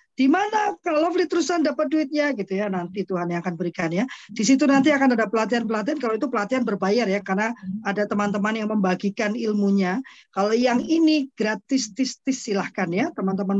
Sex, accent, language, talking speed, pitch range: female, native, Indonesian, 170 wpm, 200-265 Hz